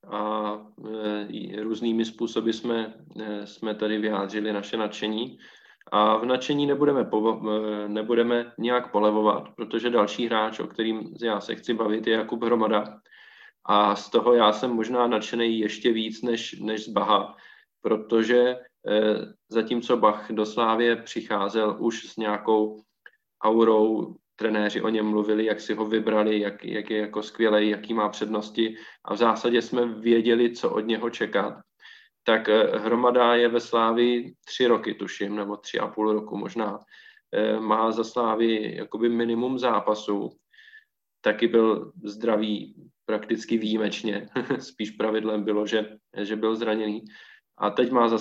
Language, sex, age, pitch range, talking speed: Czech, male, 20-39, 105-115 Hz, 145 wpm